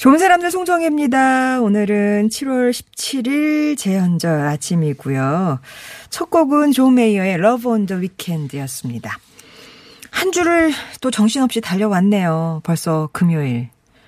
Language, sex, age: Korean, female, 40-59